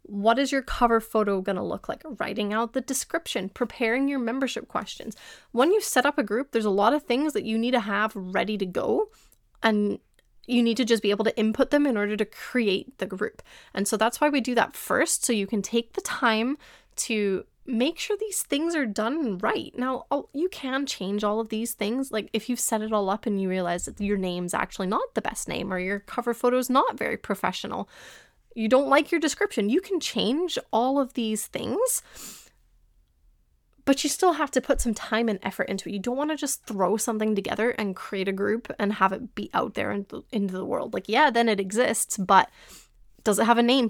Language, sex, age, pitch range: English, female, 20-39, 210-265 Hz